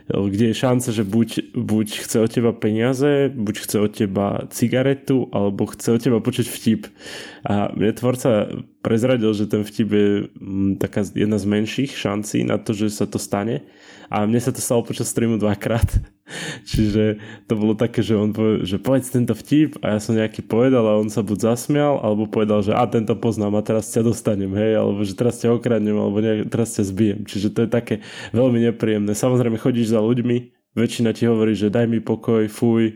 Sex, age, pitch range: male, 20-39, 105-120 Hz